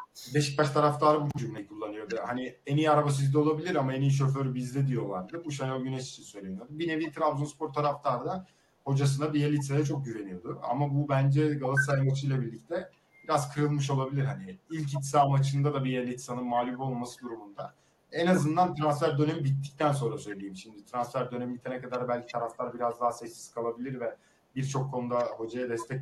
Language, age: Turkish, 40-59